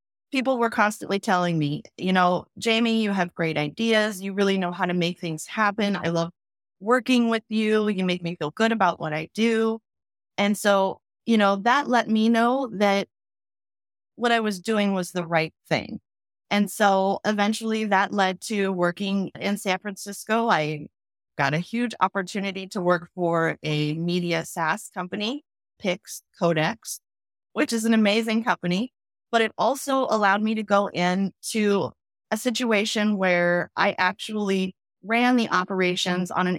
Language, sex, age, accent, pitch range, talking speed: English, female, 30-49, American, 175-220 Hz, 160 wpm